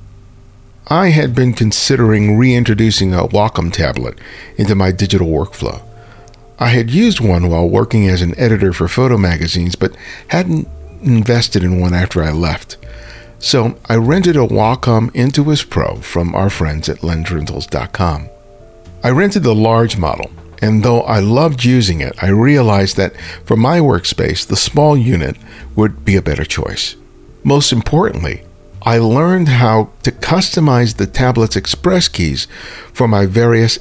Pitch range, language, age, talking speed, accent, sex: 90-120 Hz, English, 50-69, 145 wpm, American, male